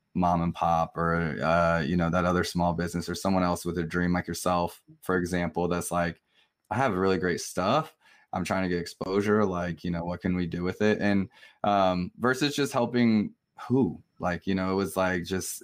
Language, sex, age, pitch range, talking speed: English, male, 20-39, 90-105 Hz, 210 wpm